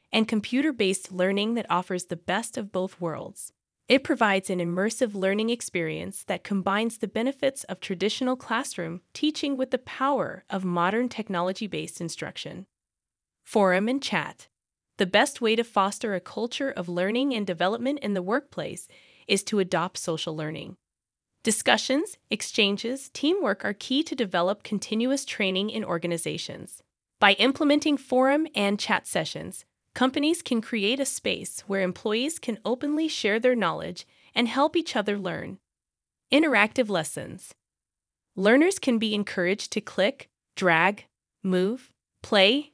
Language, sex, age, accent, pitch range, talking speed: English, female, 20-39, American, 190-260 Hz, 140 wpm